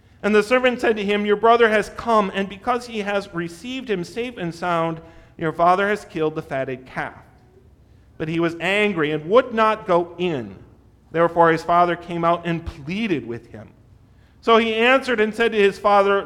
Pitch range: 145-215 Hz